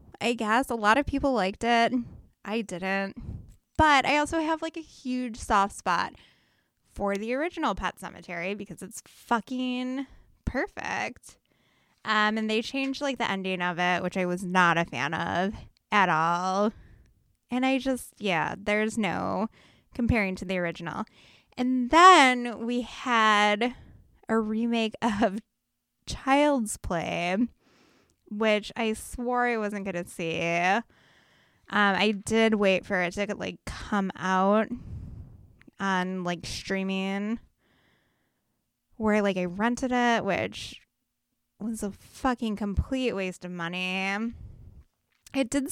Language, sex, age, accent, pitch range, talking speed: English, female, 10-29, American, 190-245 Hz, 130 wpm